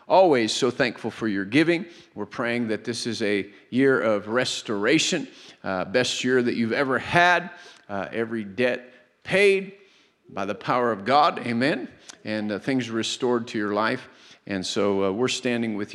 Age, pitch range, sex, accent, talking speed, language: 50-69, 105-125 Hz, male, American, 170 wpm, English